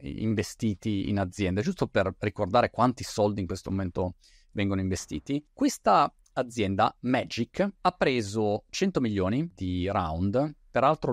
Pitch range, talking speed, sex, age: 105-130 Hz, 125 wpm, male, 30-49